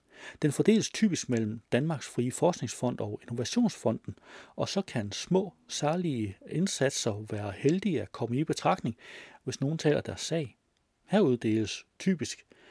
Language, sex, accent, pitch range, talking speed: Danish, male, native, 115-170 Hz, 130 wpm